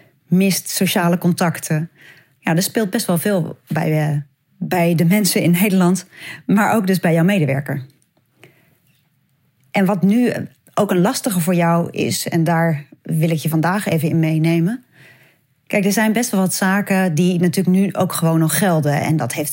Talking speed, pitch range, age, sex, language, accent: 170 wpm, 155-195 Hz, 30-49, female, Dutch, Dutch